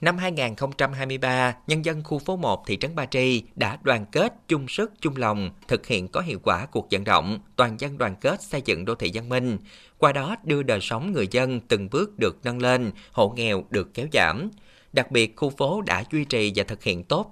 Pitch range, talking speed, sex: 105-145 Hz, 220 wpm, male